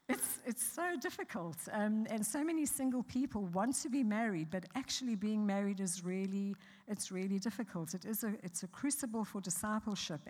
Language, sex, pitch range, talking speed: English, female, 180-230 Hz, 180 wpm